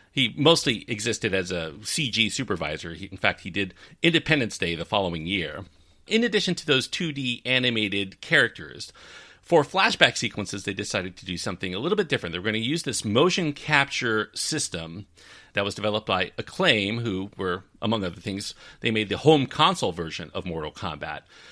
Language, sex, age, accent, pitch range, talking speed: English, male, 40-59, American, 95-130 Hz, 175 wpm